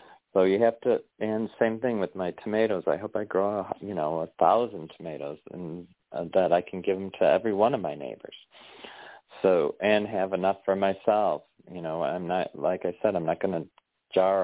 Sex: male